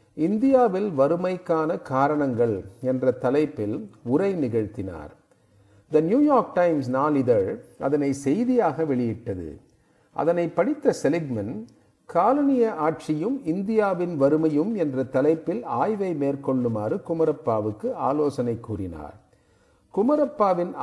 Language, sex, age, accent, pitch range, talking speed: Tamil, male, 50-69, native, 125-170 Hz, 80 wpm